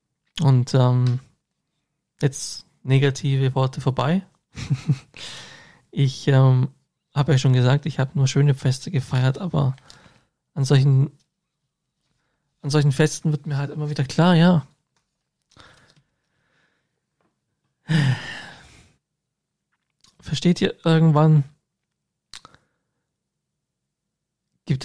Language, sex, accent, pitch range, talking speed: German, male, German, 135-160 Hz, 80 wpm